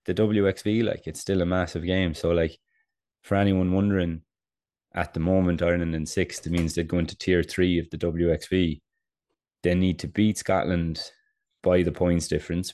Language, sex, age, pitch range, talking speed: English, male, 20-39, 80-90 Hz, 180 wpm